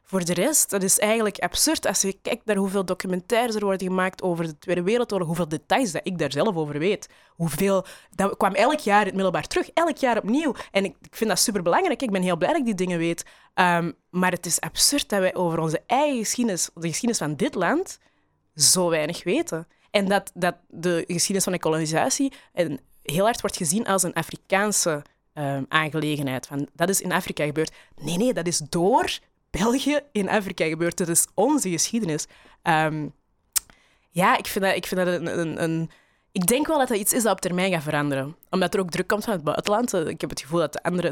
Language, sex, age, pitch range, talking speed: Dutch, female, 20-39, 170-210 Hz, 215 wpm